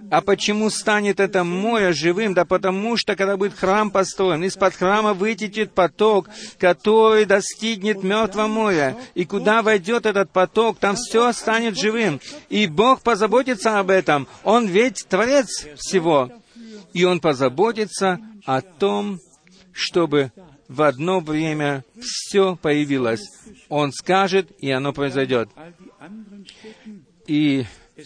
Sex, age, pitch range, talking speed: male, 50-69, 145-210 Hz, 120 wpm